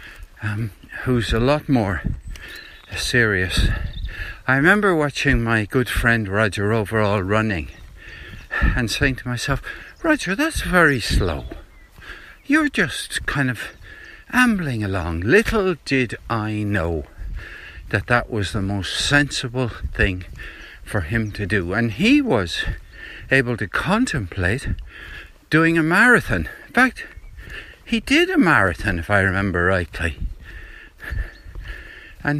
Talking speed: 120 wpm